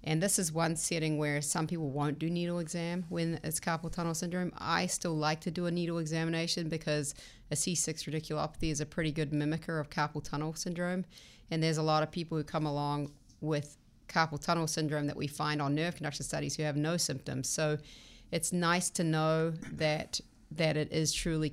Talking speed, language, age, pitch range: 200 wpm, English, 30-49, 145-160 Hz